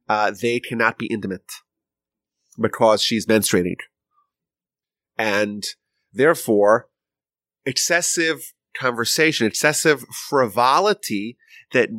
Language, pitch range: English, 115-155 Hz